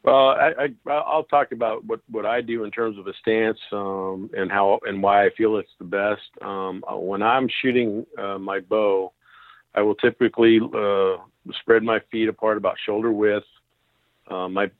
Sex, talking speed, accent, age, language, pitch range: male, 185 wpm, American, 50-69, English, 95-110 Hz